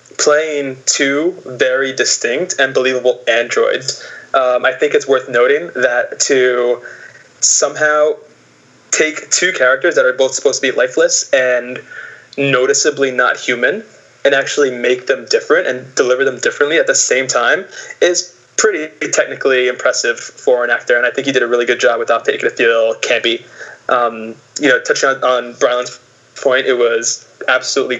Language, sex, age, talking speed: English, male, 20-39, 160 wpm